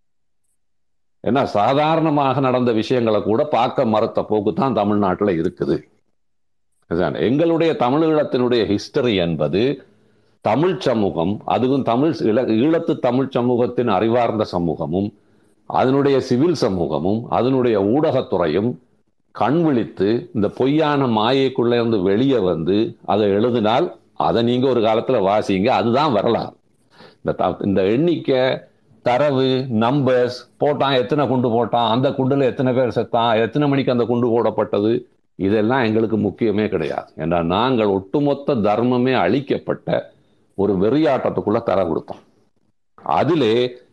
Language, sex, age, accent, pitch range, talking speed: Tamil, male, 50-69, native, 105-135 Hz, 110 wpm